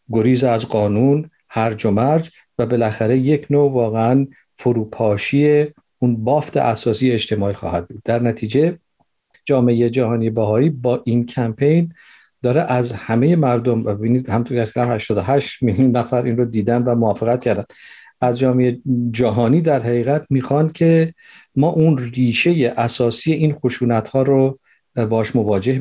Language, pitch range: Persian, 110-130 Hz